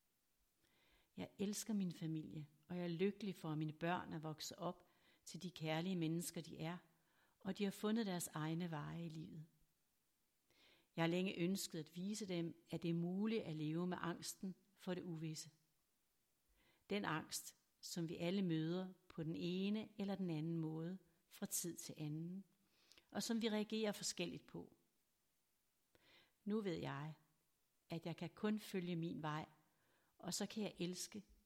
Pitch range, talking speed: 160-195 Hz, 165 wpm